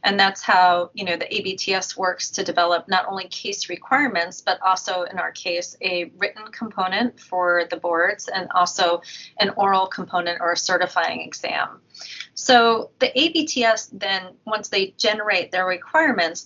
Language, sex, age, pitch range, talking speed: English, female, 30-49, 180-215 Hz, 155 wpm